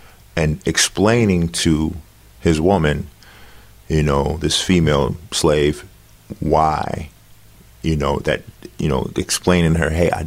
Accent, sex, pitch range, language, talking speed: American, male, 80-100 Hz, English, 125 wpm